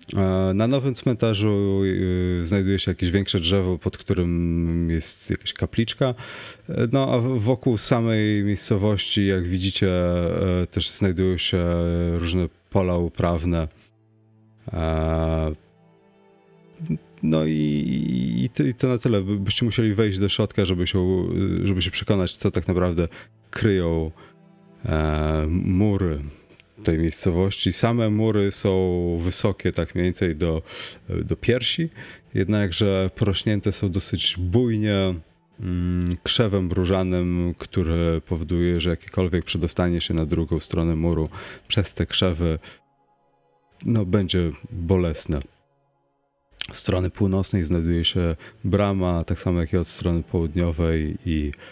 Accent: native